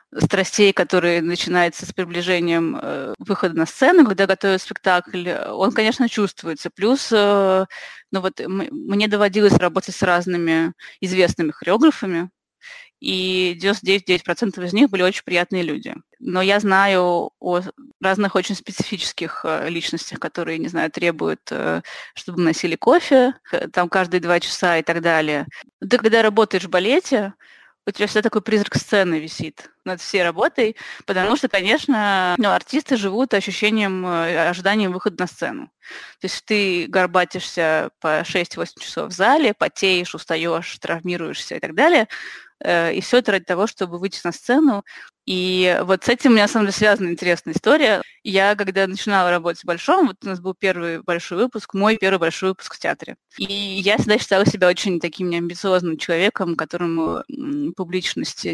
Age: 20-39